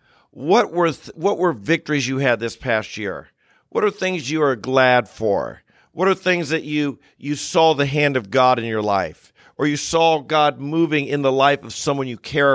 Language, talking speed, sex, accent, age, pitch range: English, 210 wpm, male, American, 50-69, 135-165 Hz